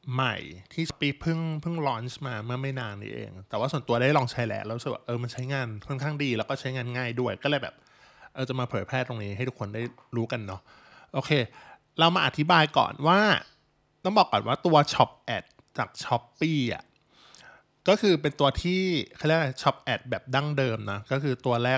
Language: Thai